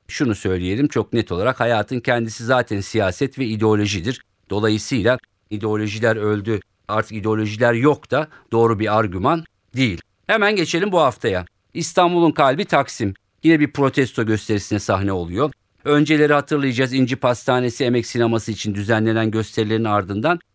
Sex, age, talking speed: male, 50-69, 130 wpm